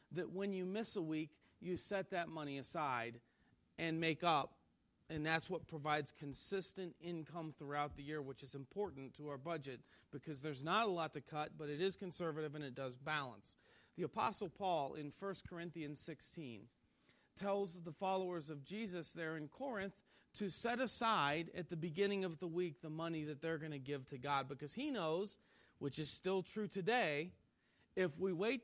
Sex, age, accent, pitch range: male, 40-59, American, 150-195 Hz